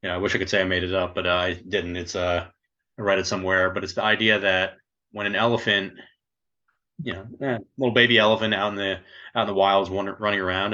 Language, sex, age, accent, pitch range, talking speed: English, male, 30-49, American, 90-105 Hz, 250 wpm